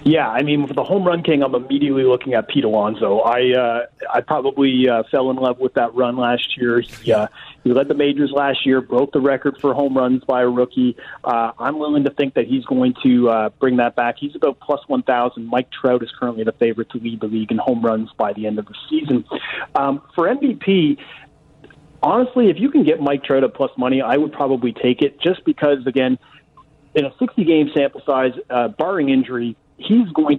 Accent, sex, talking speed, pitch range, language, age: American, male, 215 wpm, 120-145 Hz, English, 30-49